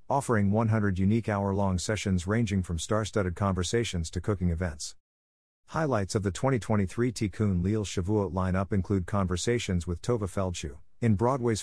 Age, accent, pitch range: 50-69, American, 90-115 Hz